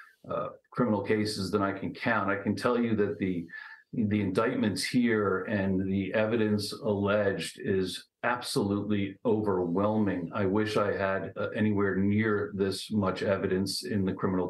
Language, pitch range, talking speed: English, 100-120 Hz, 150 wpm